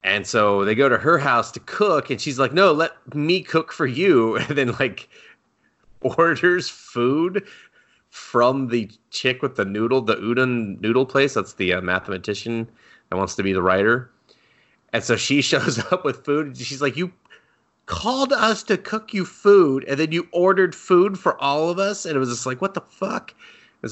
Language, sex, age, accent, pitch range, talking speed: English, male, 30-49, American, 100-140 Hz, 195 wpm